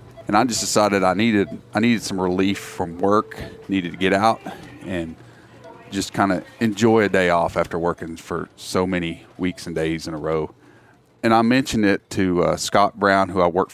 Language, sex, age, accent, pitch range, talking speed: English, male, 30-49, American, 85-105 Hz, 200 wpm